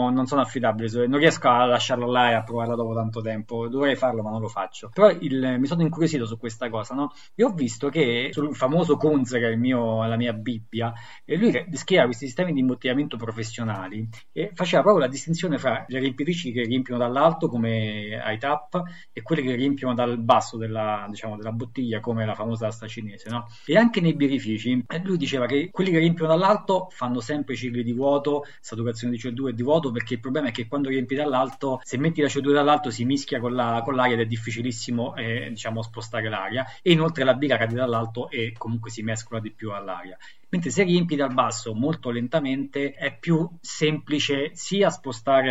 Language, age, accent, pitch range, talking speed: Italian, 20-39, native, 115-140 Hz, 200 wpm